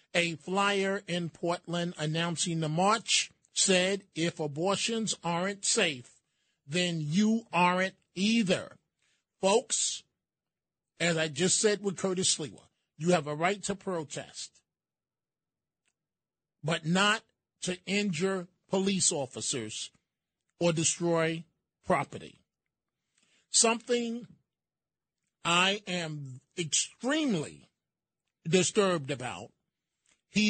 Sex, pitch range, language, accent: male, 160-195 Hz, English, American